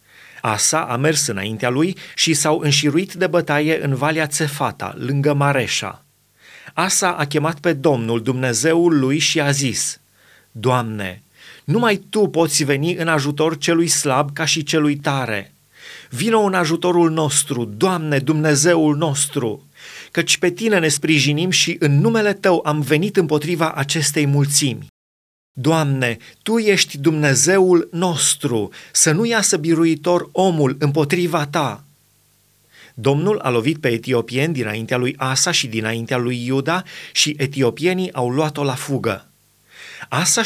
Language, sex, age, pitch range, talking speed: Romanian, male, 30-49, 135-170 Hz, 135 wpm